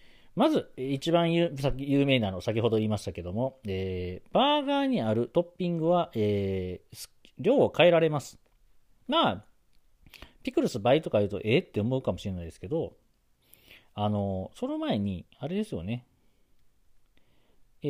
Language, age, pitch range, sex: Japanese, 40-59, 95-155 Hz, male